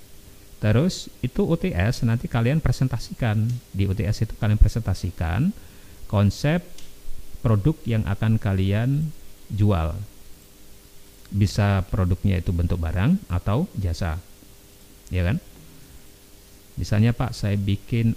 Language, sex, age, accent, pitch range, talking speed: Indonesian, male, 50-69, native, 95-115 Hz, 100 wpm